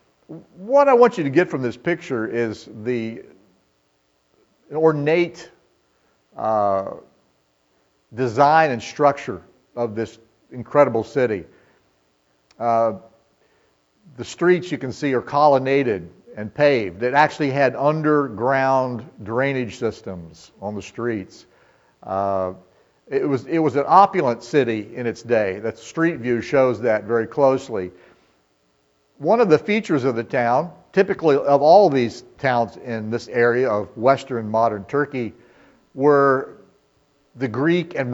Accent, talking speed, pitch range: American, 125 wpm, 110-145 Hz